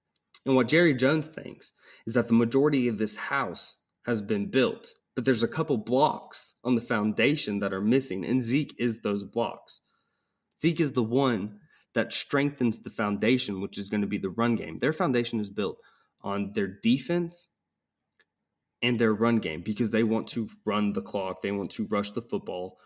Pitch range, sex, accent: 105-130 Hz, male, American